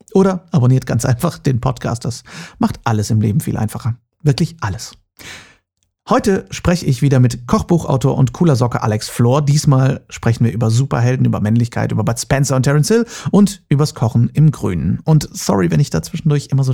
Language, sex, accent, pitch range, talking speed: German, male, German, 115-145 Hz, 185 wpm